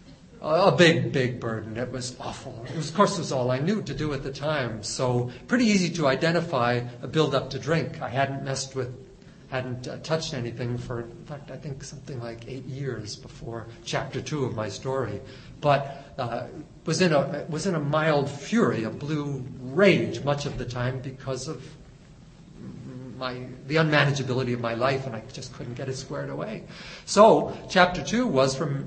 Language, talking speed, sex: English, 185 wpm, male